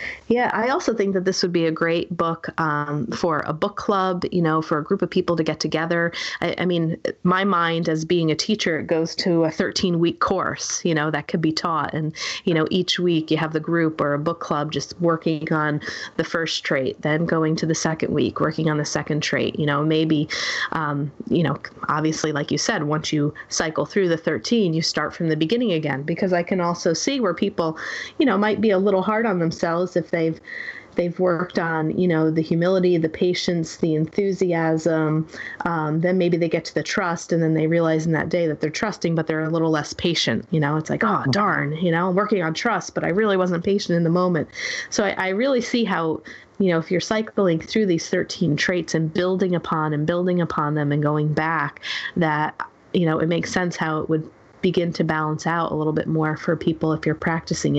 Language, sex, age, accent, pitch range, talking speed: English, female, 30-49, American, 155-180 Hz, 230 wpm